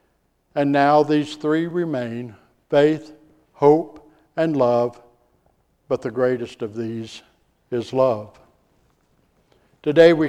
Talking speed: 105 wpm